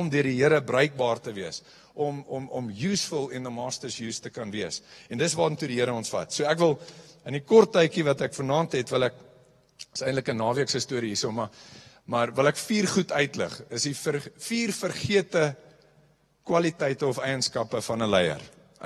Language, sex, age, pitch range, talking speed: English, male, 50-69, 120-155 Hz, 205 wpm